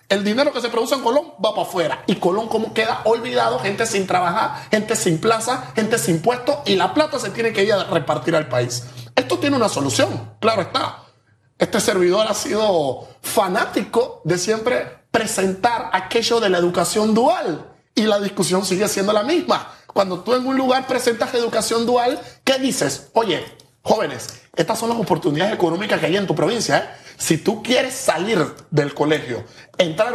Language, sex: Spanish, male